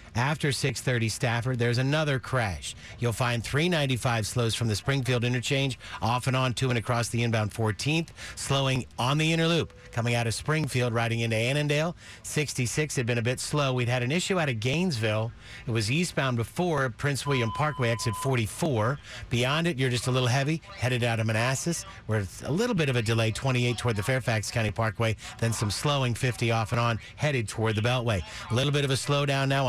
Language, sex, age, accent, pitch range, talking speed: English, male, 50-69, American, 115-135 Hz, 200 wpm